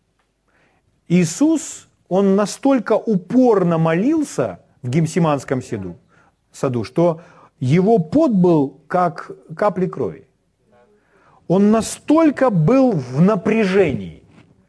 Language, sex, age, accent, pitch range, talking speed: Russian, male, 40-59, native, 155-205 Hz, 85 wpm